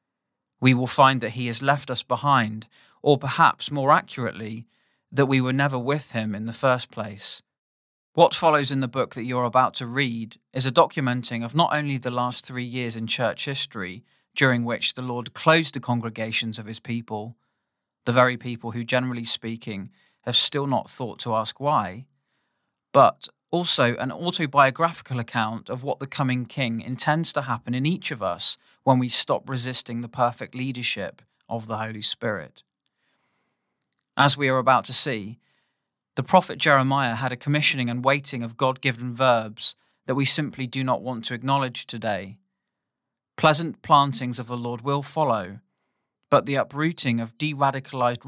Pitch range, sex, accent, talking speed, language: 115-140 Hz, male, British, 170 wpm, English